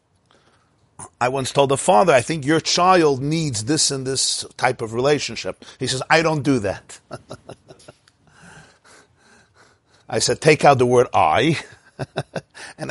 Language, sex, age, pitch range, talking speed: English, male, 50-69, 120-200 Hz, 140 wpm